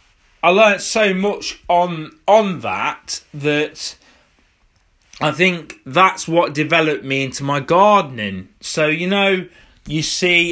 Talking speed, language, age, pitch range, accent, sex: 125 wpm, English, 20-39, 130-170 Hz, British, male